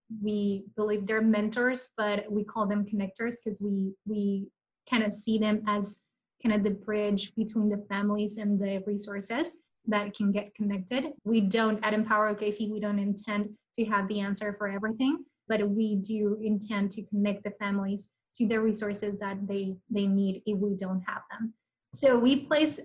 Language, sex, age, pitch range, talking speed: English, female, 20-39, 205-225 Hz, 180 wpm